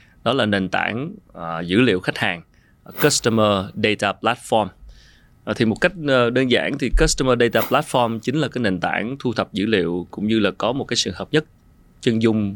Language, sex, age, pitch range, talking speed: Vietnamese, male, 20-39, 100-125 Hz, 190 wpm